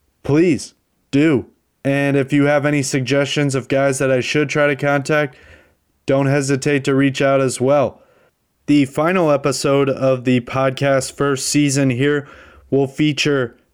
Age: 30-49